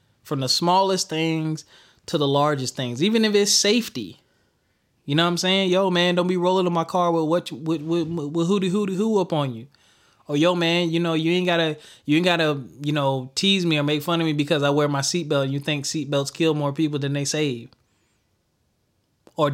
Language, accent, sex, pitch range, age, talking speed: English, American, male, 140-175 Hz, 20-39, 225 wpm